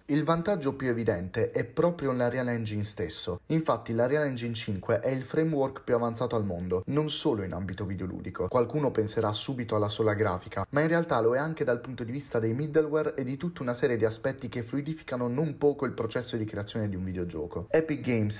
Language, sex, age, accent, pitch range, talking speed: Italian, male, 30-49, native, 105-130 Hz, 210 wpm